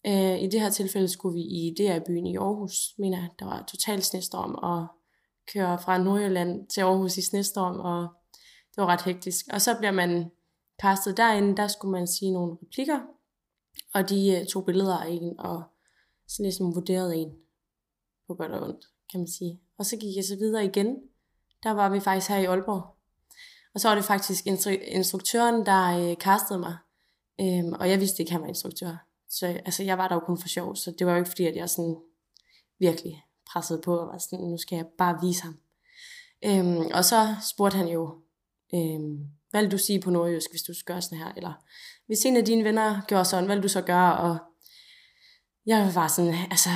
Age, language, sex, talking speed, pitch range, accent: 20-39, Danish, female, 200 wpm, 175-200 Hz, native